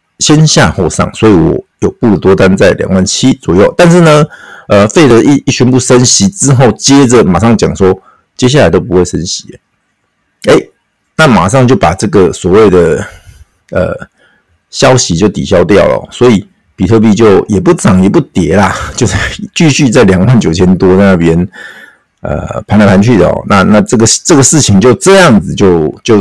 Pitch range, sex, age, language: 95-130 Hz, male, 50-69, Chinese